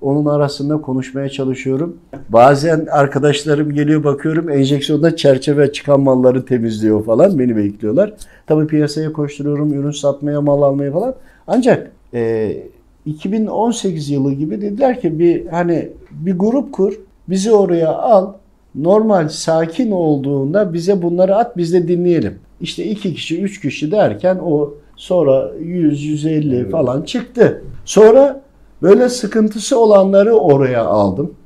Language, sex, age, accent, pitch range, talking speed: Turkish, male, 50-69, native, 140-200 Hz, 125 wpm